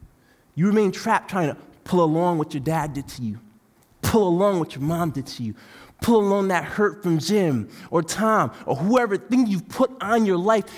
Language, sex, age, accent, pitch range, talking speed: English, male, 20-39, American, 130-205 Hz, 205 wpm